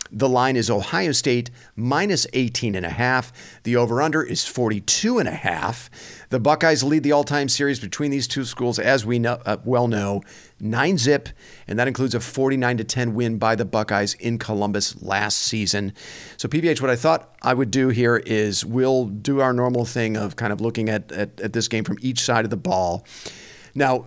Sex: male